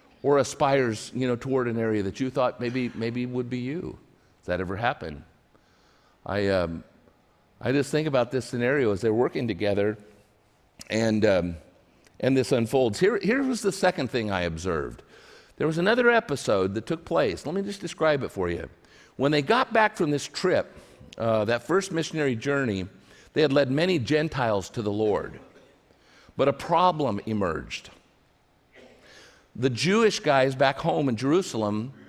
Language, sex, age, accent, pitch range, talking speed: English, male, 50-69, American, 110-160 Hz, 165 wpm